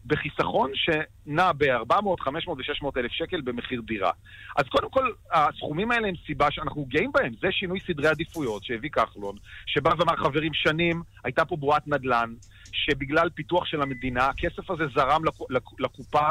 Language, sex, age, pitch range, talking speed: Hebrew, male, 40-59, 130-175 Hz, 150 wpm